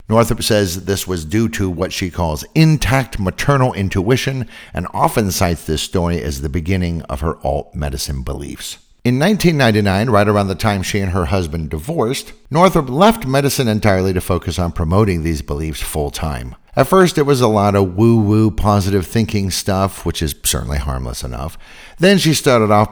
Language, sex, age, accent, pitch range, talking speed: English, male, 50-69, American, 80-110 Hz, 175 wpm